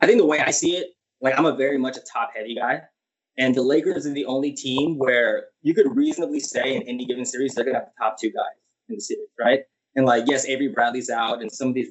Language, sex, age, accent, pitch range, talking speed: English, male, 20-39, American, 125-150 Hz, 270 wpm